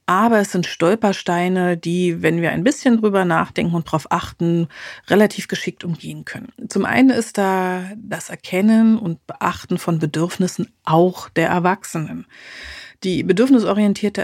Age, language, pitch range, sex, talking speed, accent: 40-59, German, 170-210 Hz, female, 140 wpm, German